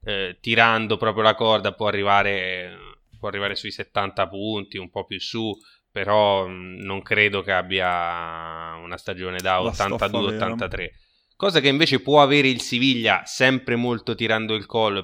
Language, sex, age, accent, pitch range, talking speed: Italian, male, 20-39, native, 105-130 Hz, 140 wpm